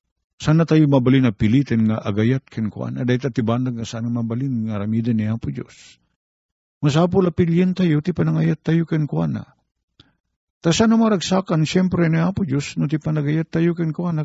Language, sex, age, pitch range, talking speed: Filipino, male, 50-69, 110-160 Hz, 150 wpm